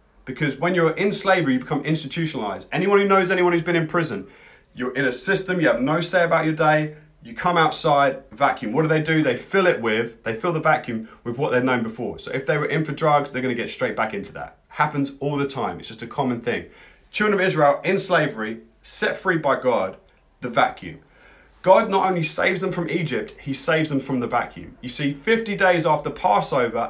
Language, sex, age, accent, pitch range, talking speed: English, male, 30-49, British, 125-170 Hz, 225 wpm